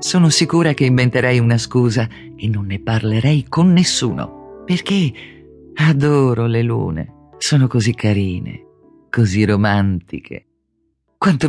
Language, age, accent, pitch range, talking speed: Italian, 40-59, native, 100-150 Hz, 115 wpm